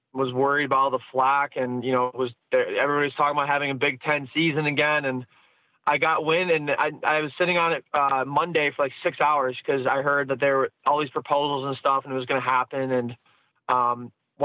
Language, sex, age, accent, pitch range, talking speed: English, male, 20-39, American, 135-160 Hz, 235 wpm